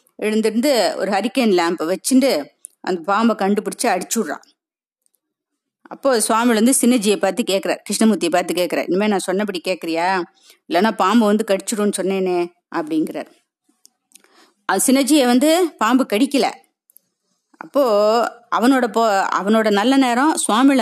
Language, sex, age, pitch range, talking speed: Tamil, female, 30-49, 190-265 Hz, 110 wpm